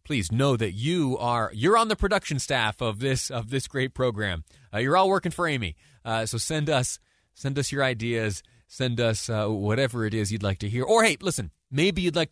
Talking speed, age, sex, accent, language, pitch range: 225 wpm, 30-49, male, American, English, 105-145 Hz